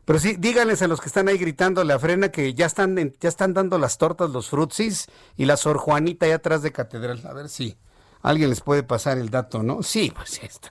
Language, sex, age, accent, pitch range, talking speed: Spanish, male, 50-69, Mexican, 125-175 Hz, 245 wpm